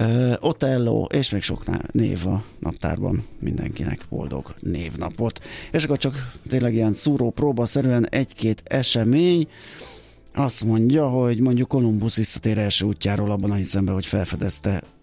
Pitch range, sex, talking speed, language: 105-130 Hz, male, 135 wpm, Hungarian